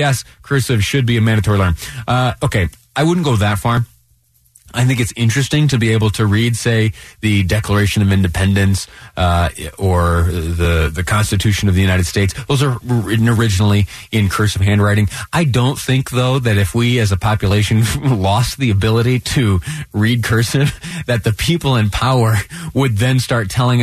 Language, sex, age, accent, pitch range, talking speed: English, male, 30-49, American, 100-125 Hz, 175 wpm